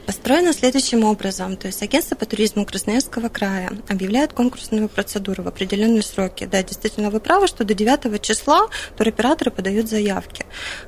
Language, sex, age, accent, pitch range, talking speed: Russian, female, 20-39, native, 205-245 Hz, 150 wpm